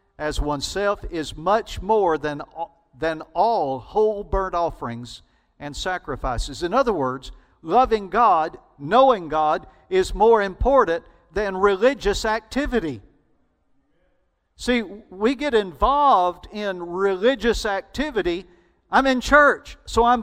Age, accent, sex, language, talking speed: 50-69, American, male, English, 115 wpm